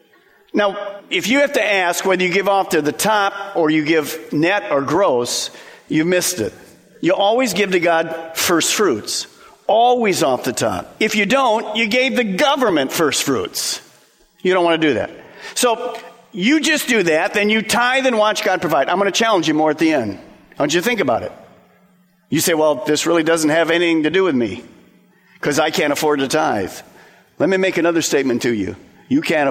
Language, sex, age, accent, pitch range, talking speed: English, male, 50-69, American, 165-235 Hz, 205 wpm